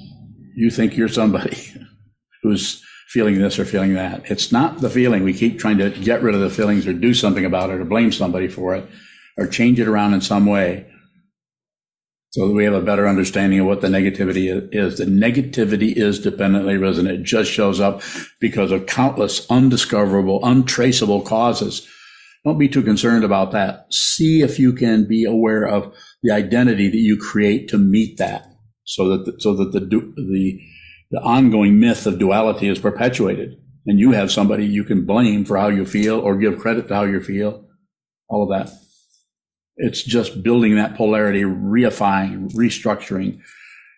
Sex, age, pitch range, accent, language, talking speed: male, 60-79, 100-115 Hz, American, English, 175 wpm